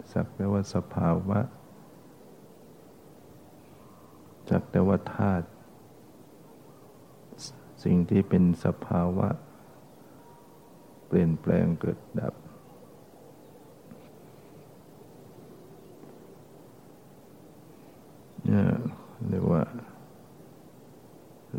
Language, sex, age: Thai, male, 60-79